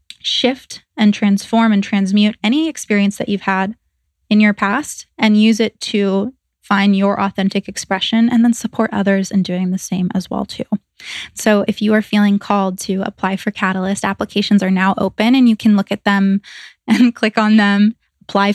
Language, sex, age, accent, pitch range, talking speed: English, female, 20-39, American, 200-230 Hz, 185 wpm